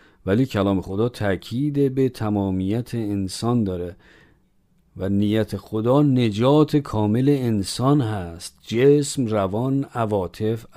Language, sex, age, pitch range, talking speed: Persian, male, 50-69, 105-140 Hz, 100 wpm